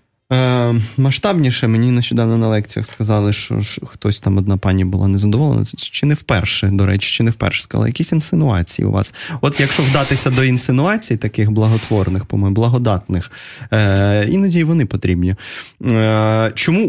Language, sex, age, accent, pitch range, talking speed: Russian, male, 20-39, native, 100-125 Hz, 155 wpm